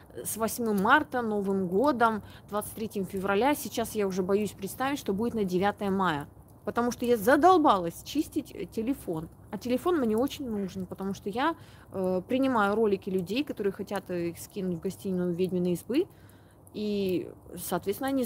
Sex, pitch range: female, 190-250 Hz